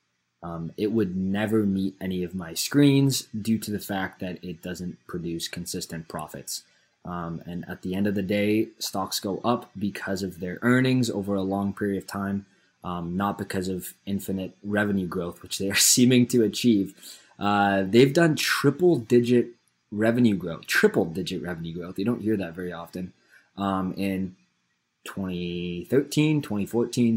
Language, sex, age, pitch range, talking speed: English, male, 20-39, 90-115 Hz, 160 wpm